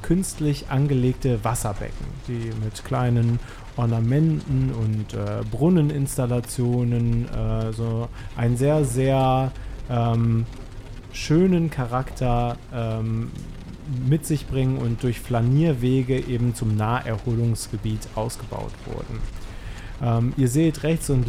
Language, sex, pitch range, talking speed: German, male, 110-135 Hz, 95 wpm